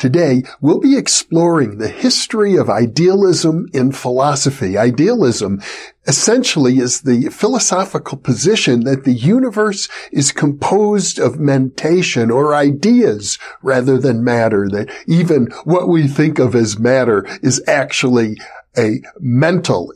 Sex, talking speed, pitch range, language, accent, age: male, 120 wpm, 125-175 Hz, English, American, 50-69